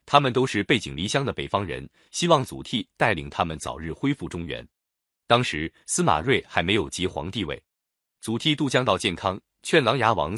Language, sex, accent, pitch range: Chinese, male, native, 85-125 Hz